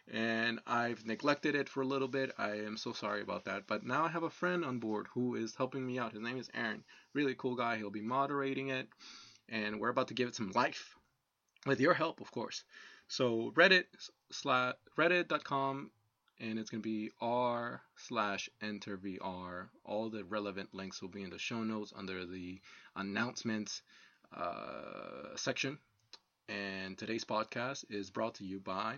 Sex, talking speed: male, 180 wpm